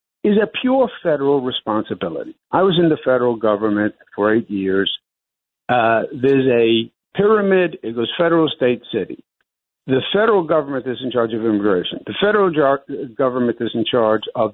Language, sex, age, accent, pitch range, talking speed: English, male, 60-79, American, 135-225 Hz, 160 wpm